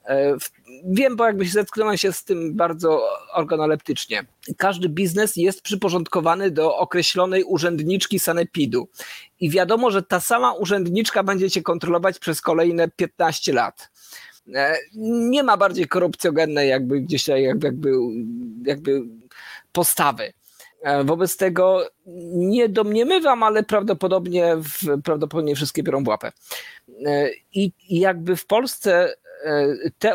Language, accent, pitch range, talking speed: Polish, native, 150-195 Hz, 110 wpm